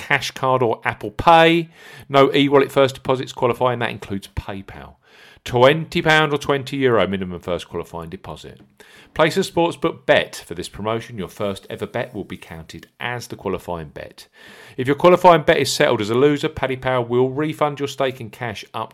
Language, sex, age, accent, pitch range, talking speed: English, male, 40-59, British, 95-145 Hz, 185 wpm